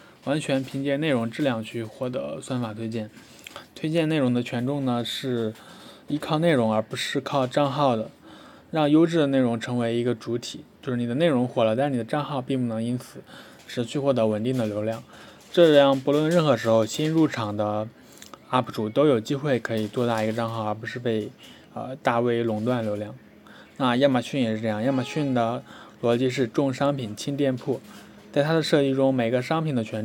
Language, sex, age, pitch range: Chinese, male, 20-39, 115-140 Hz